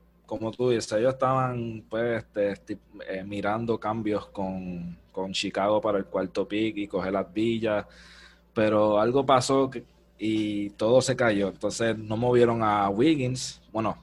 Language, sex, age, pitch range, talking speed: Spanish, male, 20-39, 105-125 Hz, 150 wpm